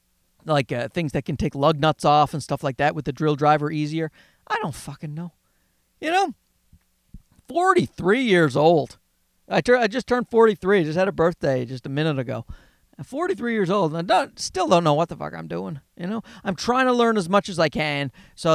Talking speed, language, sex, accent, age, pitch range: 225 wpm, English, male, American, 40-59, 140-200 Hz